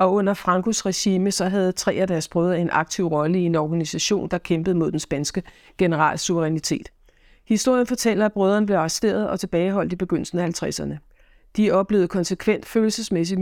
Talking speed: 175 wpm